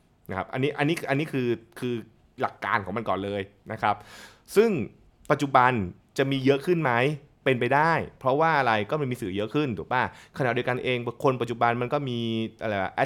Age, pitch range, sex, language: 20-39, 115-155 Hz, male, Thai